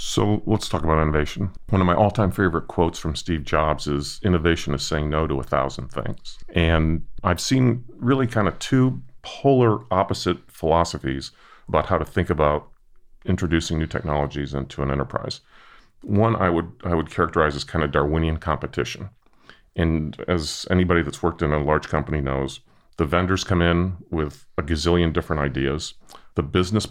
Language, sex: English, male